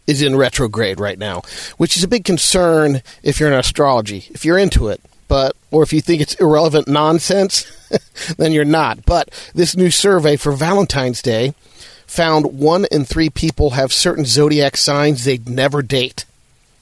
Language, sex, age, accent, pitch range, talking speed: English, male, 40-59, American, 130-165 Hz, 170 wpm